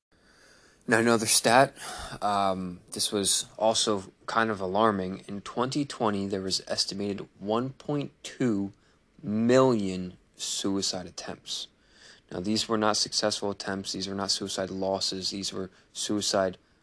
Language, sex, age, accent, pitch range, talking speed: English, male, 20-39, American, 95-110 Hz, 120 wpm